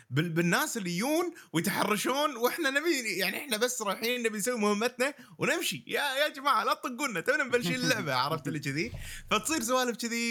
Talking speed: 170 wpm